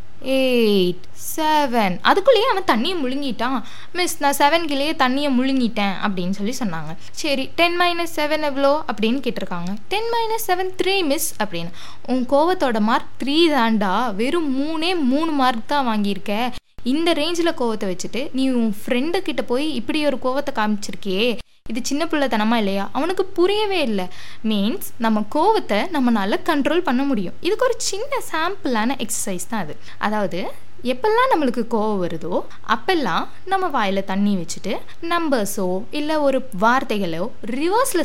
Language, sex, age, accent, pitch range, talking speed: Tamil, female, 20-39, native, 215-300 Hz, 130 wpm